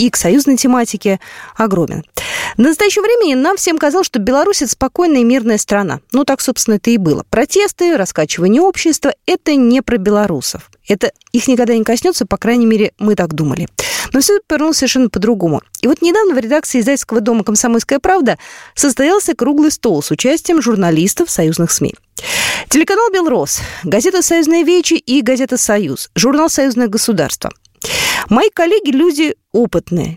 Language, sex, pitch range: Russian, female, 215-315 Hz